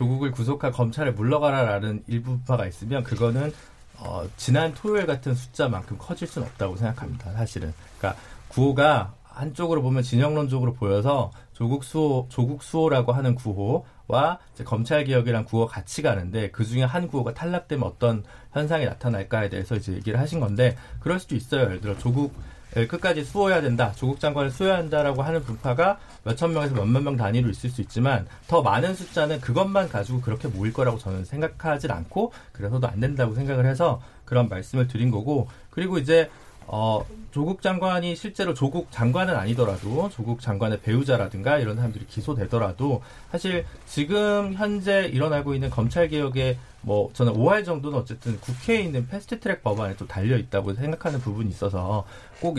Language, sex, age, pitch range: Korean, male, 40-59, 115-150 Hz